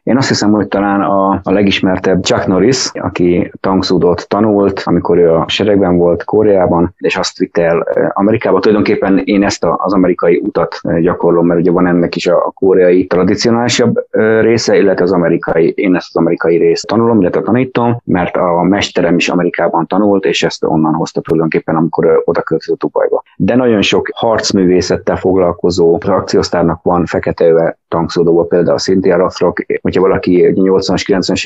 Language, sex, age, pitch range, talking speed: Hungarian, male, 30-49, 90-120 Hz, 155 wpm